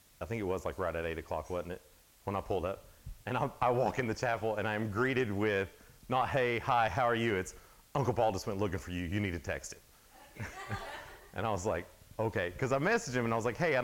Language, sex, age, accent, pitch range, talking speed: English, male, 40-59, American, 95-125 Hz, 260 wpm